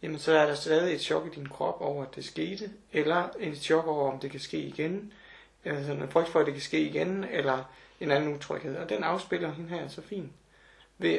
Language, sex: Danish, male